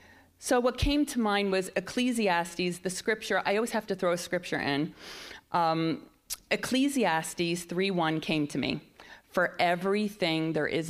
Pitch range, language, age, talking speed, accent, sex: 175-220 Hz, English, 40-59, 150 wpm, American, female